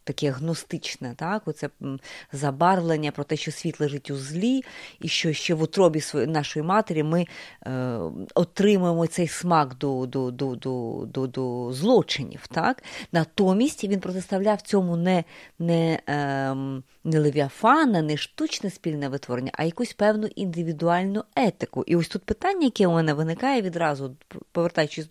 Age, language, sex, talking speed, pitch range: 30-49, Ukrainian, female, 145 wpm, 150-210 Hz